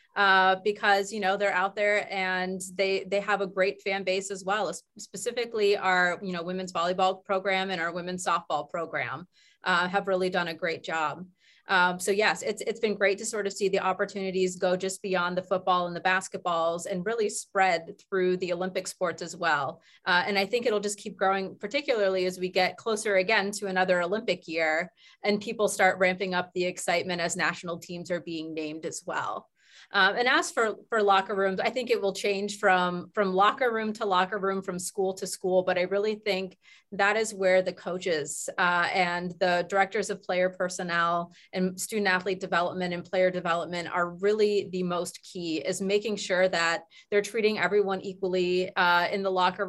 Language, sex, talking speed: English, female, 195 wpm